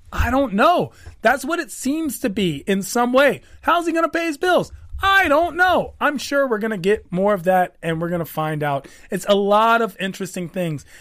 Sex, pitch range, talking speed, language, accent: male, 165-240 Hz, 235 wpm, English, American